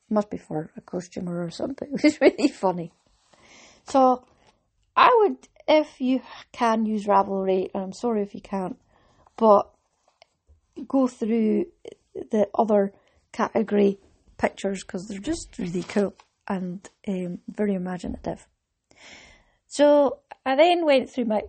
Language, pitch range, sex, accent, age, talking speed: English, 195-235 Hz, female, British, 30-49, 130 wpm